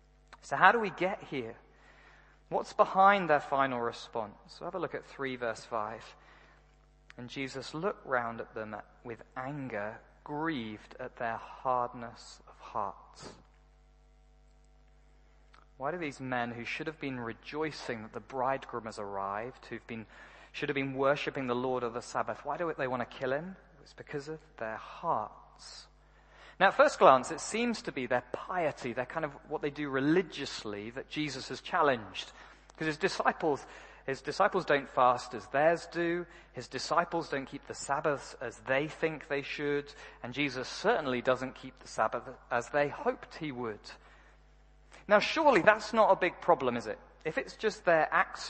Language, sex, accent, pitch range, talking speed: English, male, British, 125-165 Hz, 170 wpm